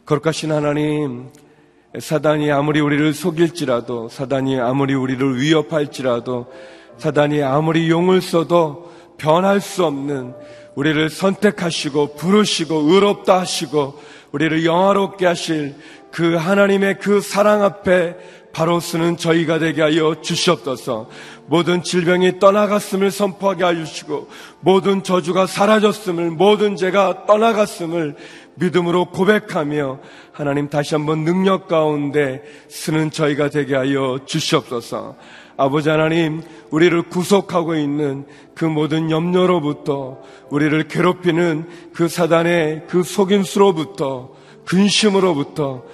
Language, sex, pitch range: Korean, male, 145-180 Hz